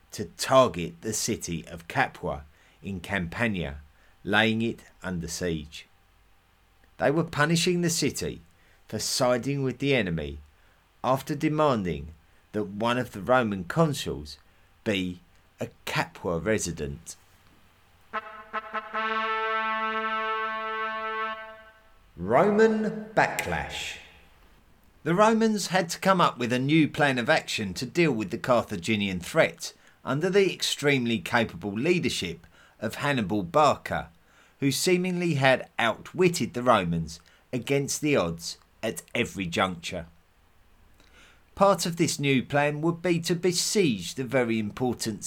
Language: English